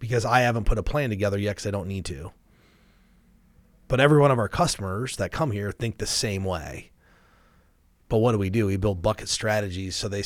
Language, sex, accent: English, male, American